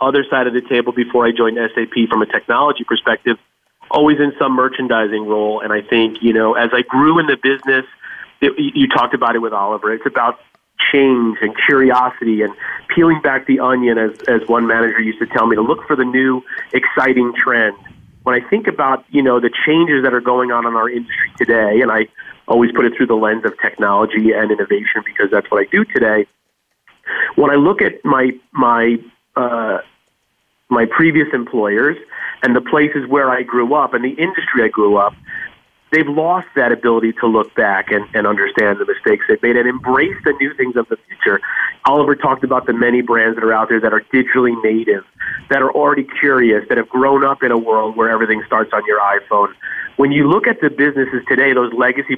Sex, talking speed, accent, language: male, 205 wpm, American, English